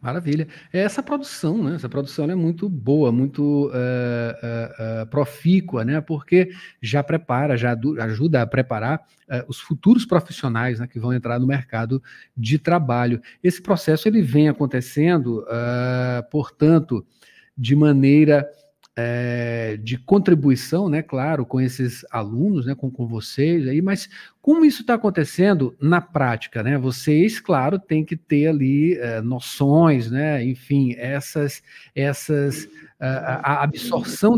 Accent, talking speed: Brazilian, 120 wpm